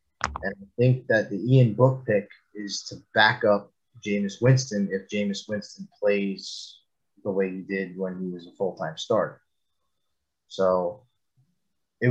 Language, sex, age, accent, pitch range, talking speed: English, male, 30-49, American, 100-130 Hz, 150 wpm